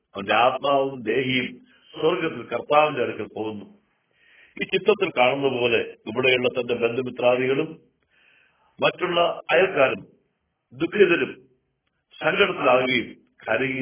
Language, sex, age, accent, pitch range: Hindi, male, 50-69, native, 115-165 Hz